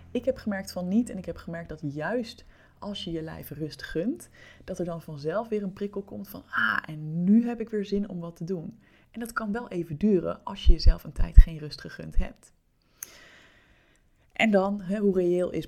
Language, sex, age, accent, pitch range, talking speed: Dutch, female, 20-39, Dutch, 155-200 Hz, 220 wpm